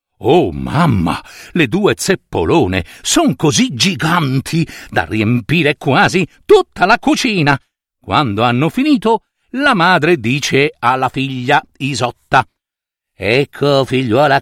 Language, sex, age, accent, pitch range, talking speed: Italian, male, 60-79, native, 120-180 Hz, 105 wpm